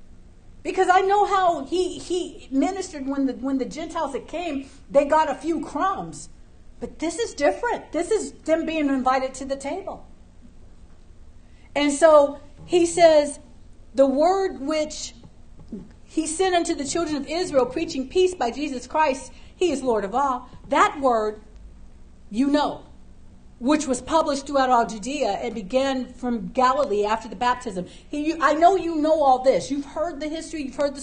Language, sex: English, female